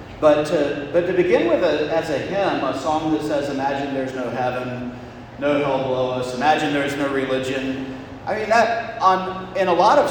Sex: male